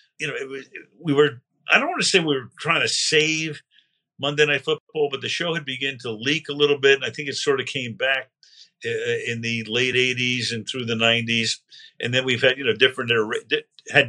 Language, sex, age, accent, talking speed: English, male, 50-69, American, 225 wpm